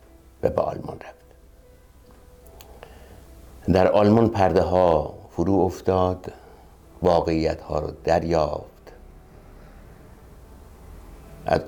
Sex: male